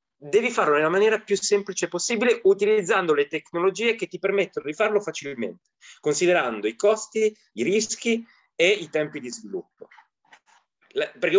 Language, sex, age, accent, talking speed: Italian, male, 20-39, native, 140 wpm